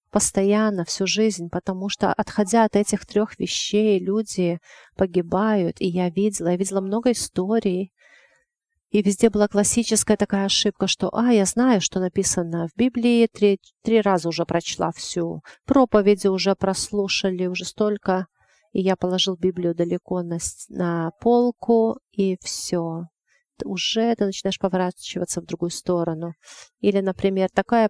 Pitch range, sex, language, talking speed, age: 180-210 Hz, female, English, 140 wpm, 40-59